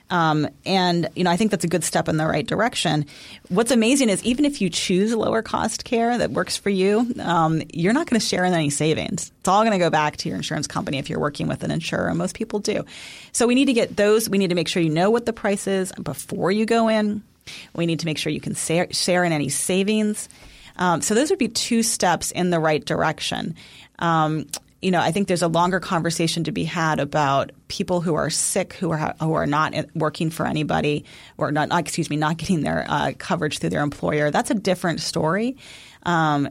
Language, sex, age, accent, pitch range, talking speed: English, female, 30-49, American, 155-190 Hz, 235 wpm